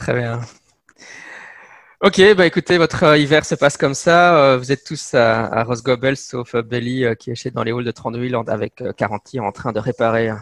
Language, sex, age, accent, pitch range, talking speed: English, male, 20-39, French, 115-130 Hz, 225 wpm